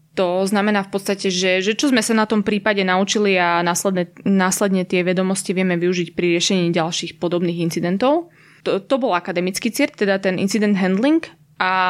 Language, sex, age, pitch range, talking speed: Slovak, female, 20-39, 180-205 Hz, 175 wpm